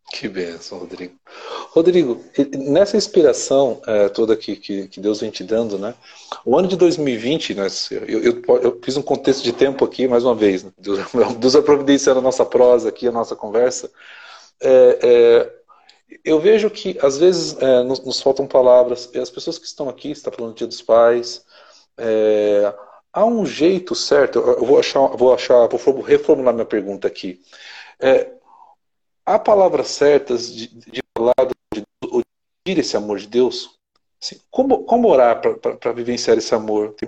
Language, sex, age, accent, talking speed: Portuguese, male, 40-59, Brazilian, 175 wpm